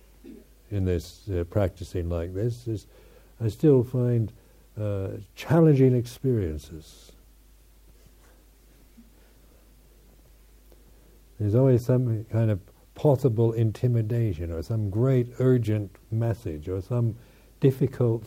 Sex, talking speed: male, 90 wpm